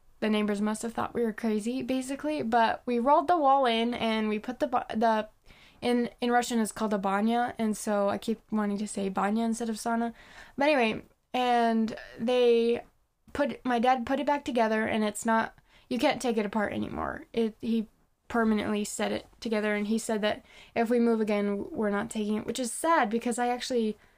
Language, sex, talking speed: English, female, 205 wpm